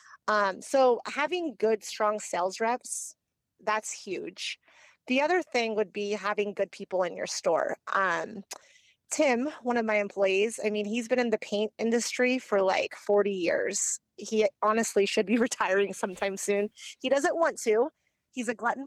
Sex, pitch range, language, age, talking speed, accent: female, 205-250 Hz, English, 30-49, 165 wpm, American